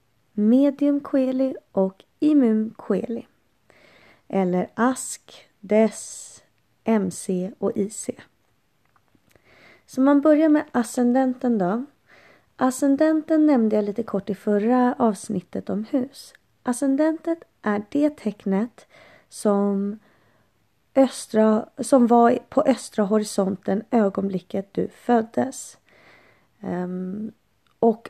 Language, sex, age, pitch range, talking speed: Swedish, female, 30-49, 190-255 Hz, 85 wpm